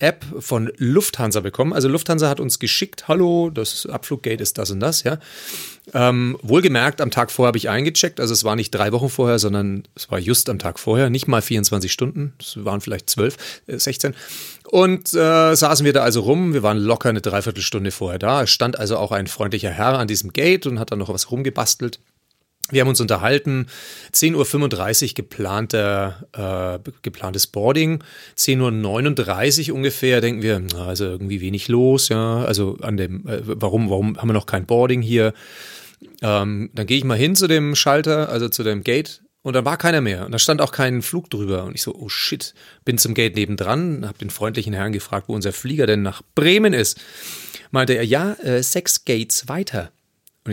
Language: German